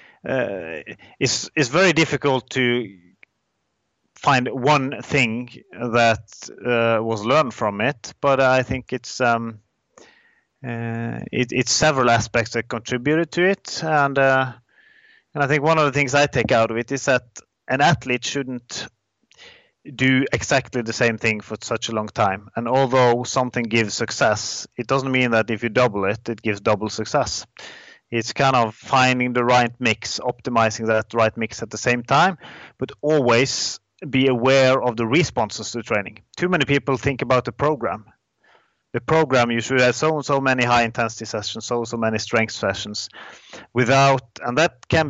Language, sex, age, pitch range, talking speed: English, male, 30-49, 115-140 Hz, 170 wpm